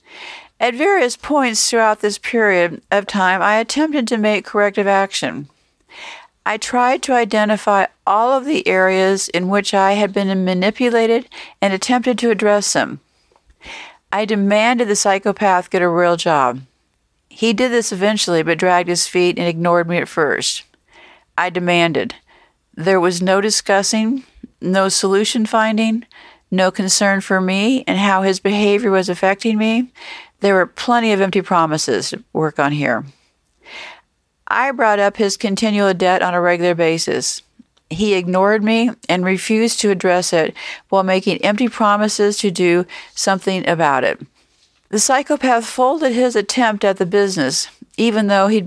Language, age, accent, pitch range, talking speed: English, 50-69, American, 185-225 Hz, 150 wpm